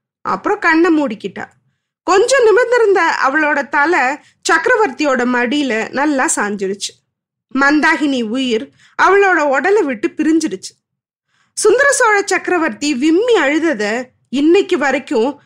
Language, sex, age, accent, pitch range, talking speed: Tamil, female, 20-39, native, 260-360 Hz, 90 wpm